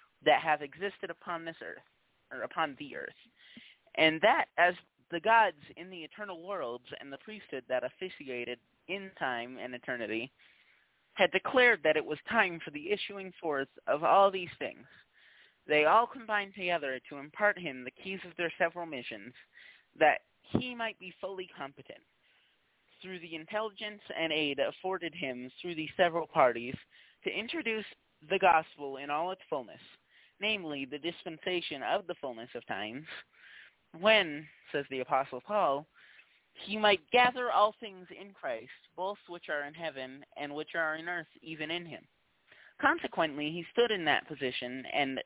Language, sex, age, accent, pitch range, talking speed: English, male, 20-39, American, 145-190 Hz, 160 wpm